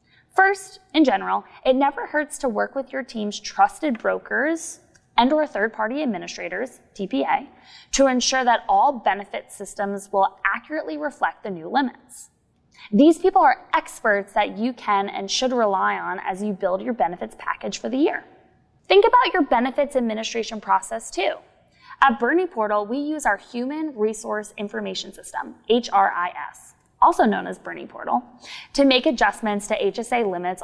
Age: 20-39